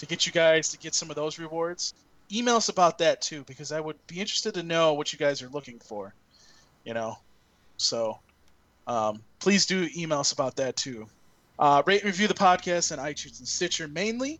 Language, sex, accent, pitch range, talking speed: English, male, American, 140-170 Hz, 210 wpm